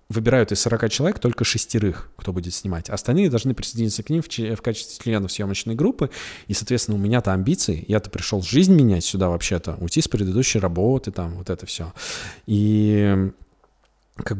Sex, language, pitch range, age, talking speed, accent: male, Russian, 95-115 Hz, 20-39, 165 wpm, native